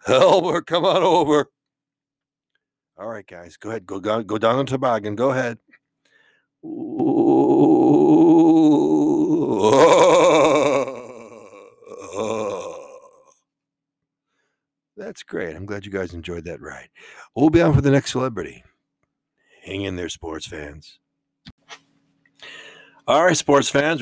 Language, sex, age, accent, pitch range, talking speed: English, male, 60-79, American, 100-150 Hz, 100 wpm